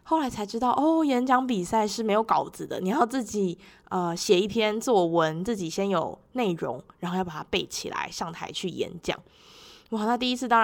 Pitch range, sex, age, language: 185-255 Hz, female, 20-39, Chinese